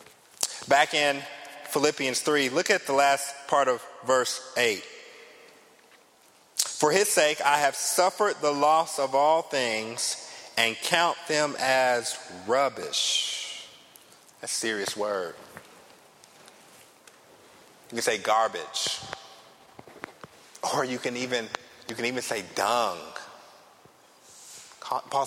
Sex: male